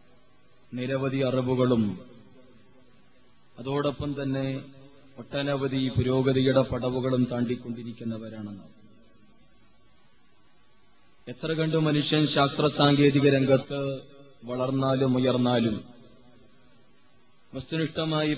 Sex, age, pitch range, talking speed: male, 20-39, 125-145 Hz, 55 wpm